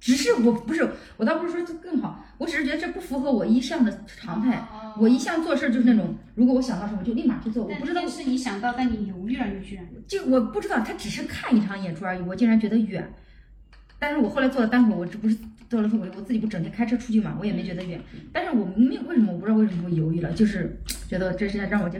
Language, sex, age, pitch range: Chinese, female, 30-49, 190-240 Hz